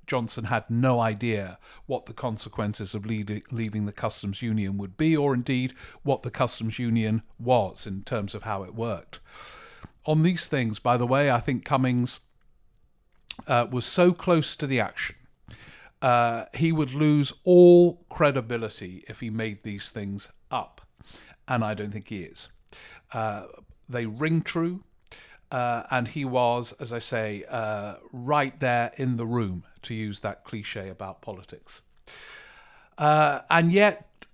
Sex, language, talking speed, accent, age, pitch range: male, English, 150 wpm, British, 50-69, 110-140 Hz